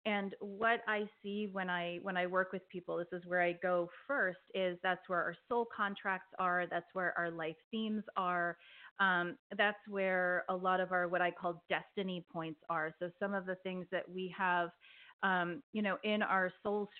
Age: 30-49